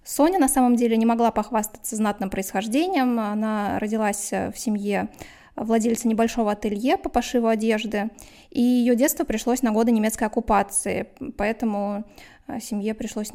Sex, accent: female, native